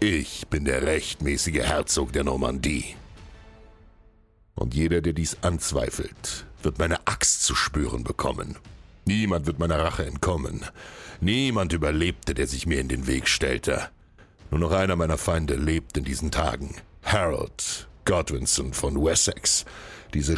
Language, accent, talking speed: German, German, 135 wpm